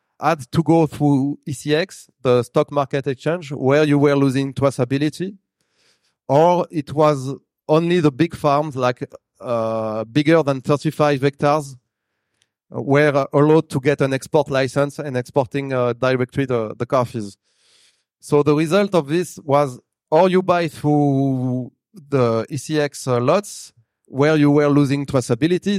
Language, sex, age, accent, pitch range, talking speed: English, male, 30-49, French, 125-155 Hz, 140 wpm